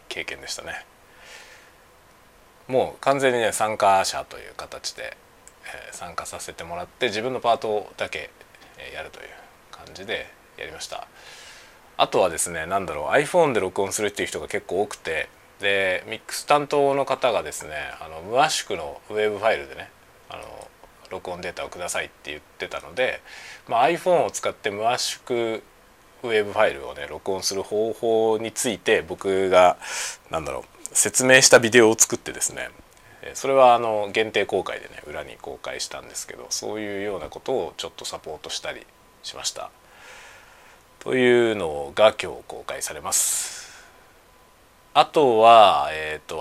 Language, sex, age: Japanese, male, 20-39